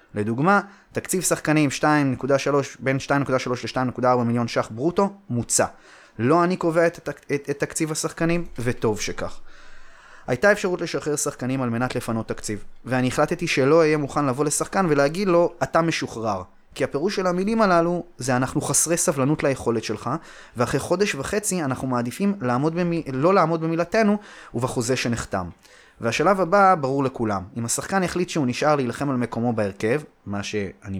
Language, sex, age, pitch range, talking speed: Hebrew, male, 20-39, 115-165 Hz, 150 wpm